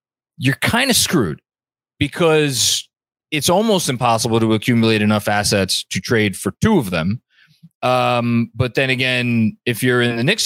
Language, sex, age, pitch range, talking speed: English, male, 30-49, 105-135 Hz, 155 wpm